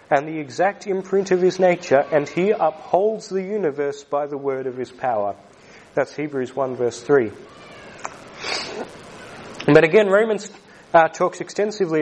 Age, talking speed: 30-49, 145 wpm